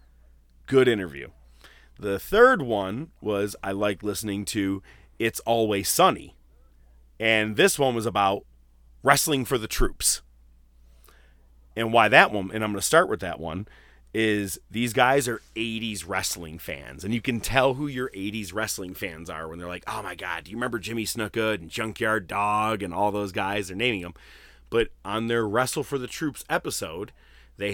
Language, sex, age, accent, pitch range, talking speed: English, male, 30-49, American, 80-110 Hz, 175 wpm